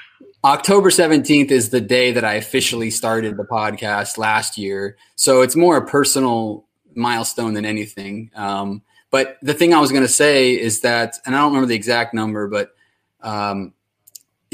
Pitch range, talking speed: 110-135 Hz, 170 wpm